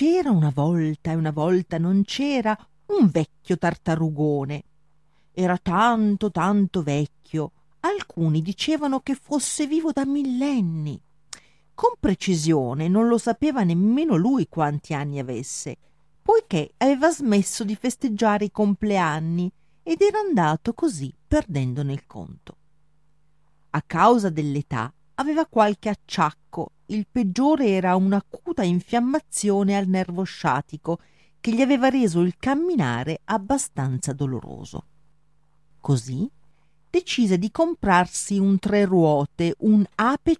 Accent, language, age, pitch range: native, Italian, 40-59, 155-230 Hz